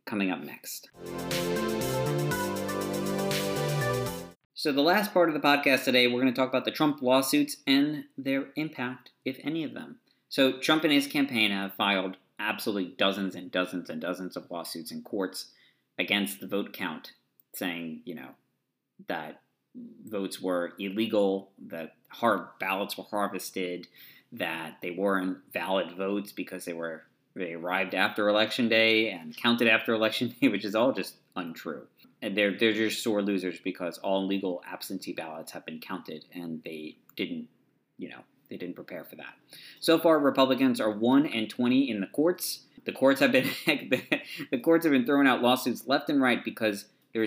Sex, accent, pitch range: male, American, 95-135 Hz